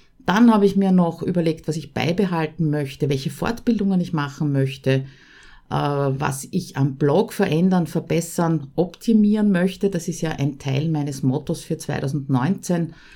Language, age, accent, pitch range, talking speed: German, 50-69, Austrian, 150-195 Hz, 145 wpm